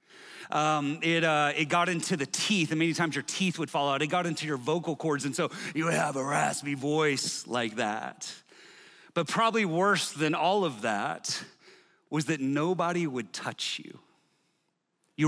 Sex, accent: male, American